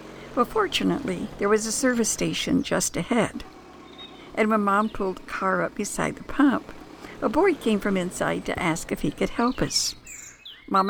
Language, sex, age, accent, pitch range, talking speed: English, female, 60-79, American, 195-280 Hz, 175 wpm